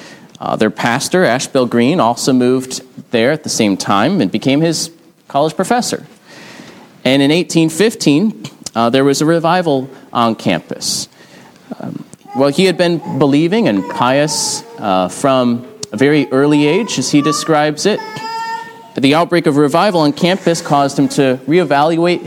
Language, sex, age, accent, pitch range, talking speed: English, male, 30-49, American, 120-165 Hz, 150 wpm